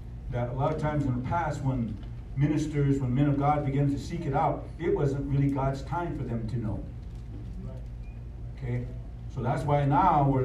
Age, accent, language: 50-69, American, English